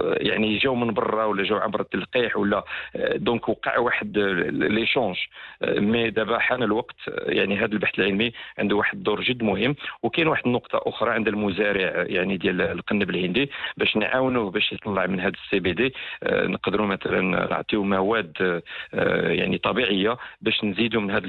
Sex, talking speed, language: male, 160 wpm, English